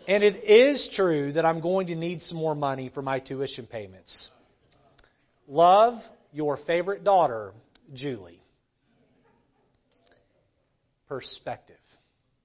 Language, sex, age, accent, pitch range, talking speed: English, male, 40-59, American, 135-195 Hz, 105 wpm